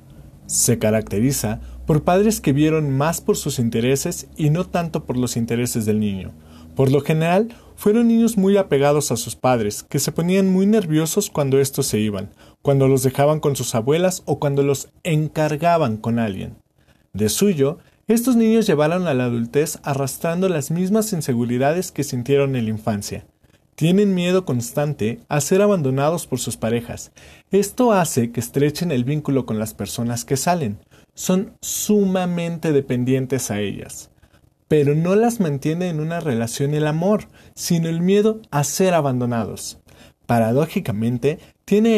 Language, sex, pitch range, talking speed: Spanish, male, 120-180 Hz, 155 wpm